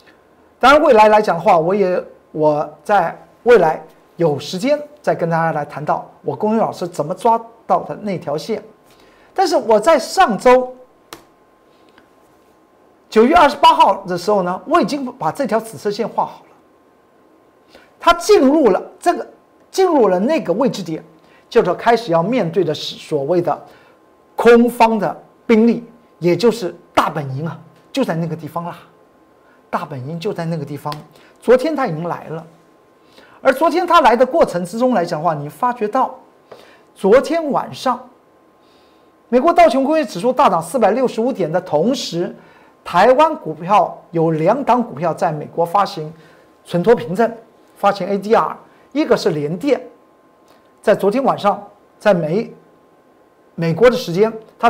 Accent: native